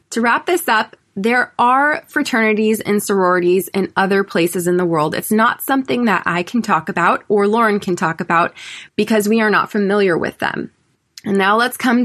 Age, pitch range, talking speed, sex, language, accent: 20-39, 190-245 Hz, 195 wpm, female, English, American